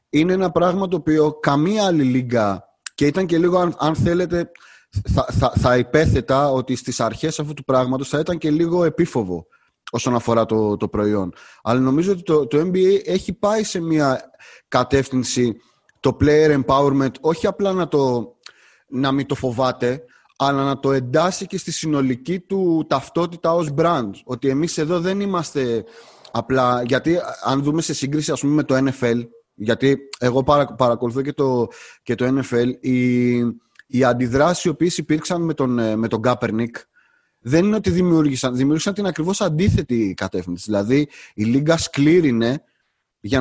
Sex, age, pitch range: male, 30-49, 125-170 Hz